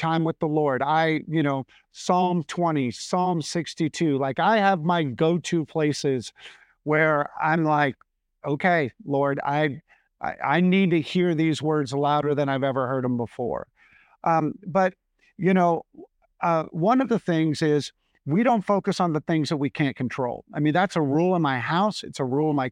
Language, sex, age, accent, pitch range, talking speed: English, male, 50-69, American, 150-190 Hz, 185 wpm